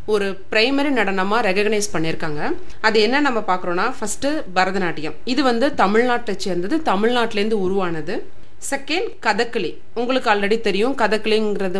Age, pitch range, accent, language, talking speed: 30-49, 190-270 Hz, native, Tamil, 115 wpm